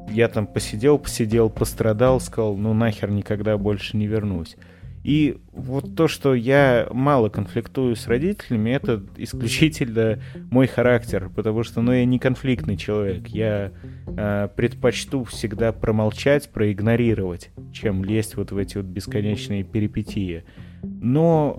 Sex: male